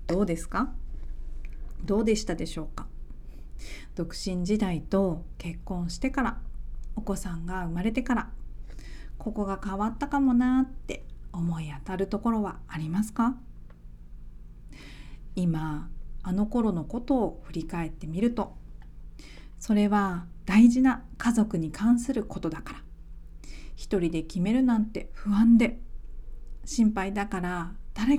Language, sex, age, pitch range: Japanese, female, 40-59, 160-220 Hz